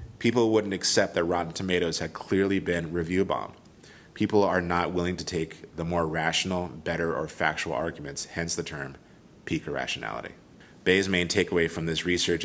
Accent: American